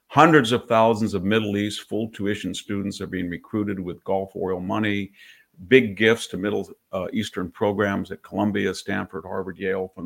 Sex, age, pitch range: male, 50-69, 95-115 Hz